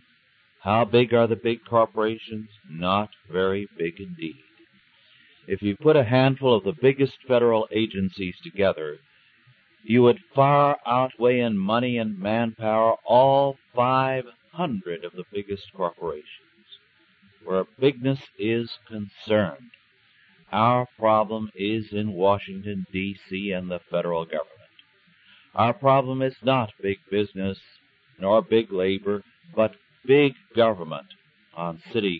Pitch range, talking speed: 95-125 Hz, 115 wpm